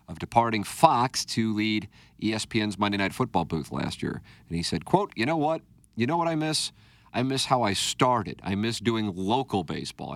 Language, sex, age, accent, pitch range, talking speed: English, male, 40-59, American, 95-120 Hz, 200 wpm